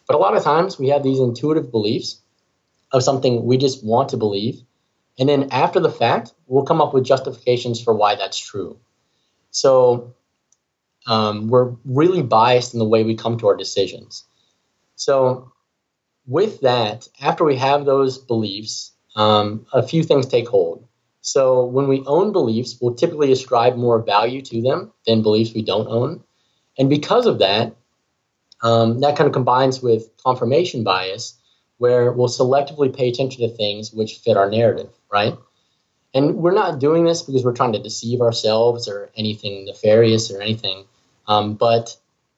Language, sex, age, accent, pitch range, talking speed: English, male, 30-49, American, 115-135 Hz, 165 wpm